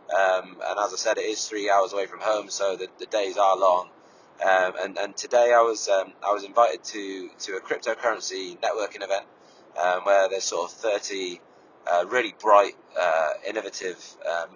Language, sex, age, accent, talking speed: English, male, 30-49, British, 190 wpm